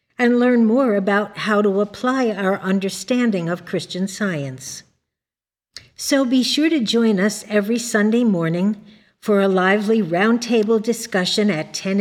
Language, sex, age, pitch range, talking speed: English, female, 60-79, 175-225 Hz, 140 wpm